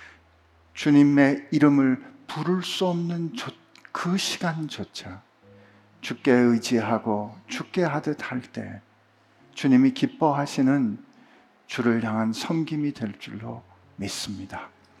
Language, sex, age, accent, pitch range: Korean, male, 50-69, native, 110-160 Hz